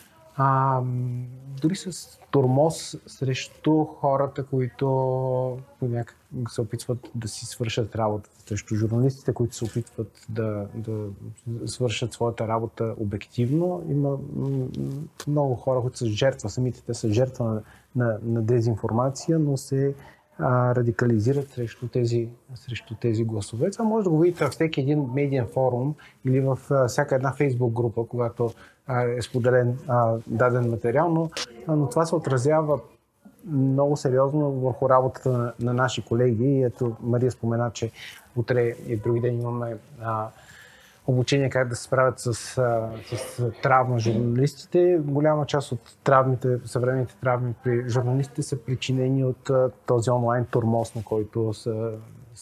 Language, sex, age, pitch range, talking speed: Bulgarian, male, 30-49, 115-135 Hz, 135 wpm